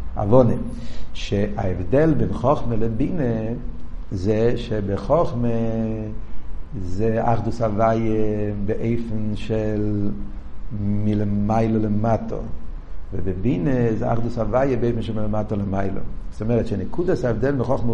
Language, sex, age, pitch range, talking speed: Hebrew, male, 50-69, 105-160 Hz, 95 wpm